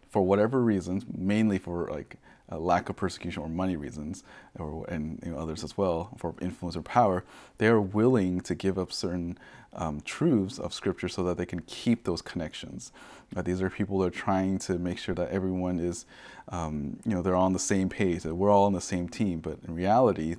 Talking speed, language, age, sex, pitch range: 210 wpm, English, 30-49, male, 85-105 Hz